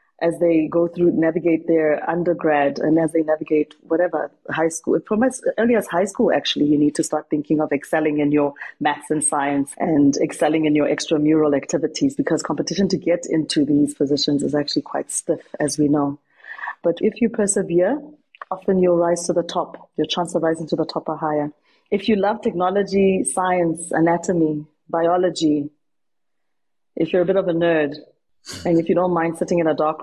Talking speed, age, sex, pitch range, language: 190 wpm, 30-49, female, 155-190 Hz, English